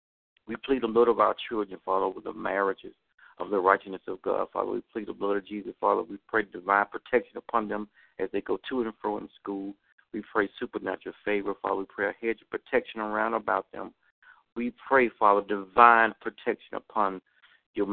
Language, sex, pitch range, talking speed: English, male, 100-120 Hz, 200 wpm